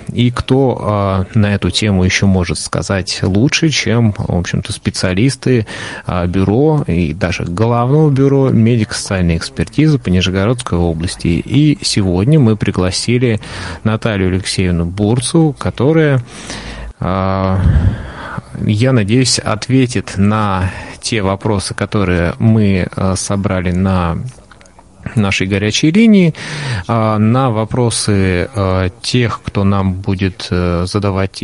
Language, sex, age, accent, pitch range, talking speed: Russian, male, 30-49, native, 95-120 Hz, 105 wpm